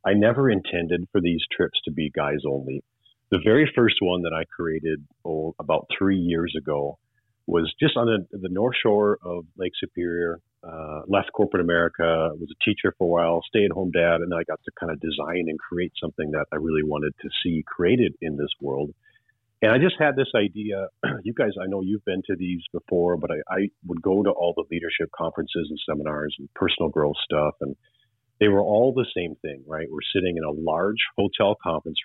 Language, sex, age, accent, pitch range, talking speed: English, male, 40-59, American, 80-110 Hz, 205 wpm